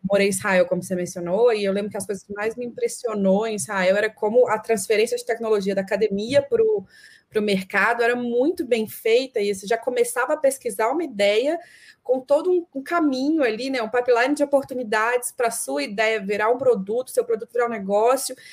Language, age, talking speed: Portuguese, 20-39, 205 wpm